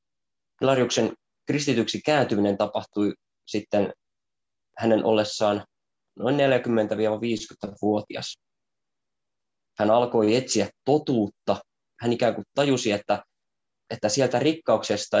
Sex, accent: male, native